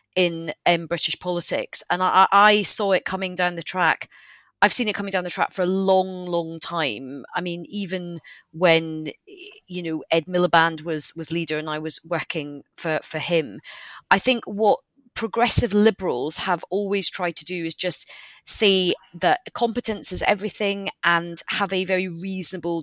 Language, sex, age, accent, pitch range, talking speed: English, female, 30-49, British, 165-200 Hz, 170 wpm